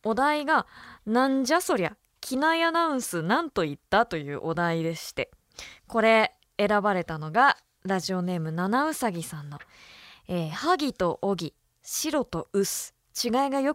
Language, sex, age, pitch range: Japanese, female, 20-39, 175-255 Hz